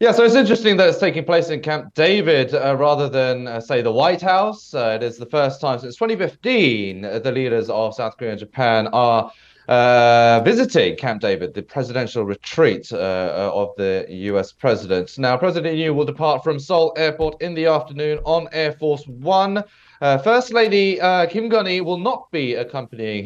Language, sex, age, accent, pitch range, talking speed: English, male, 30-49, British, 125-175 Hz, 190 wpm